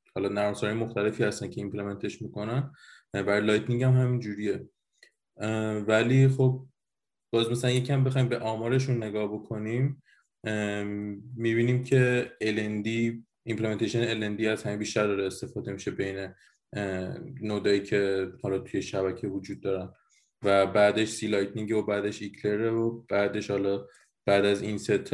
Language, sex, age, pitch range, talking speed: Persian, male, 20-39, 100-115 Hz, 130 wpm